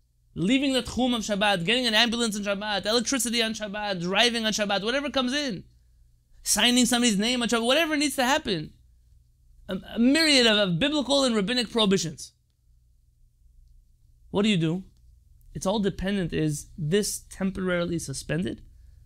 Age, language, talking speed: 20-39, English, 150 wpm